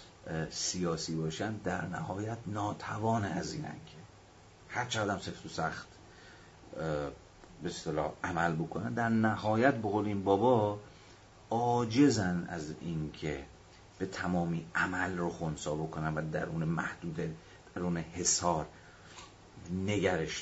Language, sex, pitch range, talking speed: Persian, male, 80-100 Hz, 120 wpm